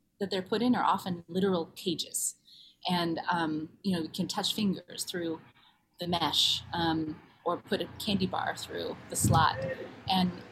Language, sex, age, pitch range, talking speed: English, female, 30-49, 170-210 Hz, 165 wpm